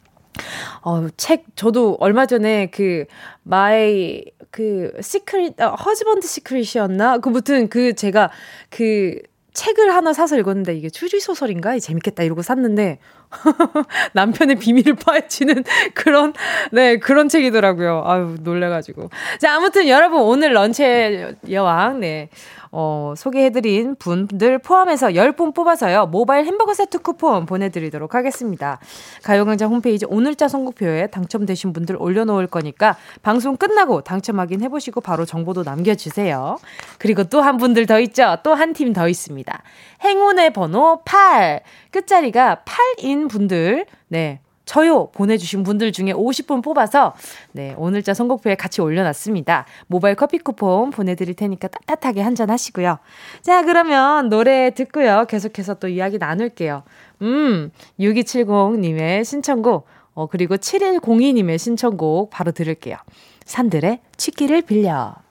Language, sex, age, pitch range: Korean, female, 20-39, 185-280 Hz